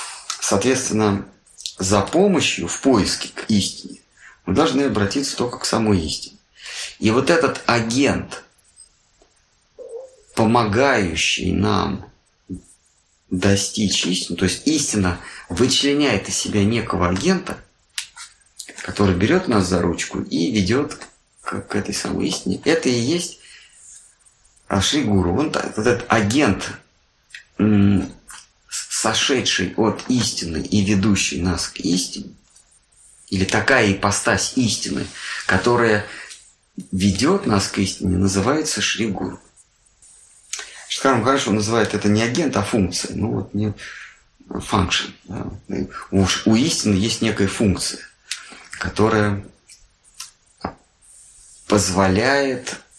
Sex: male